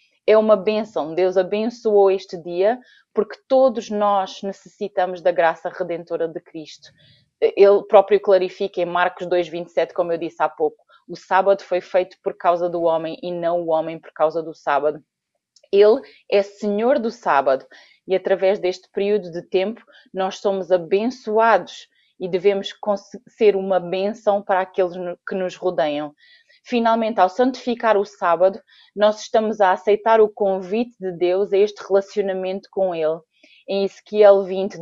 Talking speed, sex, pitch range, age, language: 150 wpm, female, 180-215 Hz, 20-39, Portuguese